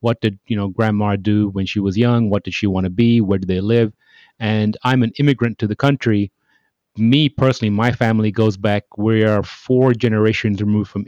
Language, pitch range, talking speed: English, 105-120 Hz, 210 wpm